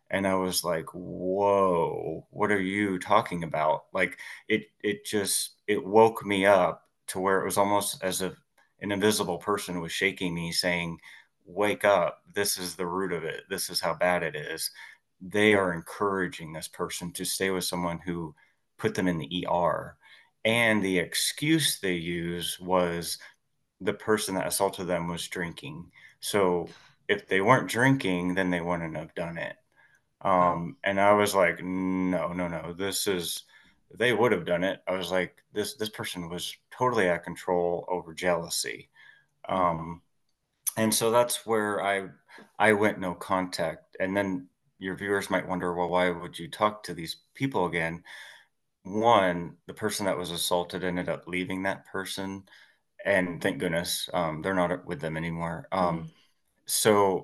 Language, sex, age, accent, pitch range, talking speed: English, male, 30-49, American, 85-100 Hz, 170 wpm